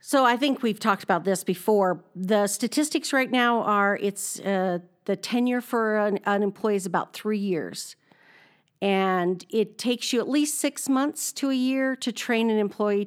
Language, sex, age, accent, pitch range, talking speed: English, female, 50-69, American, 195-245 Hz, 185 wpm